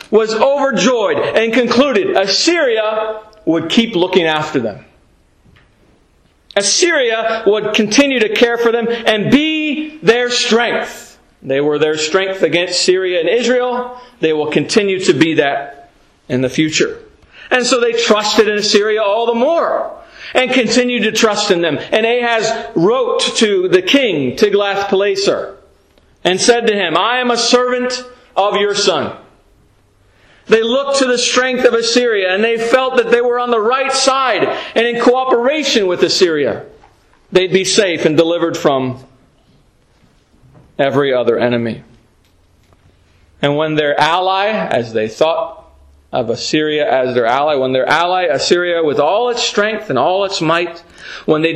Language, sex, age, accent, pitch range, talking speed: English, male, 40-59, American, 155-245 Hz, 150 wpm